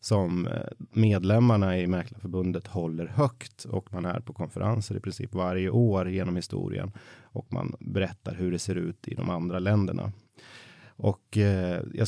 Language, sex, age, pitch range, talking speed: Swedish, male, 30-49, 95-115 Hz, 150 wpm